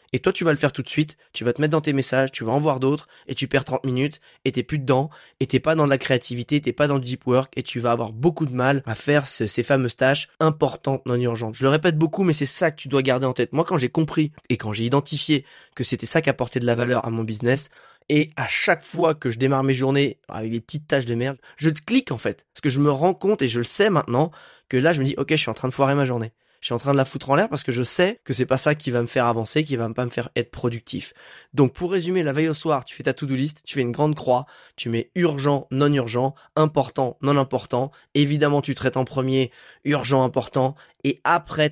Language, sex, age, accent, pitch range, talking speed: French, male, 20-39, French, 125-150 Hz, 280 wpm